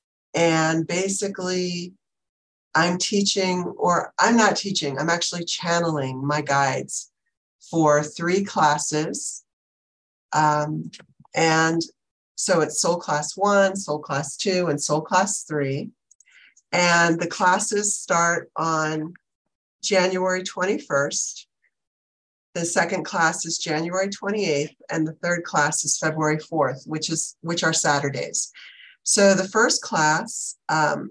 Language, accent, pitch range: English, American, 155-190 Hz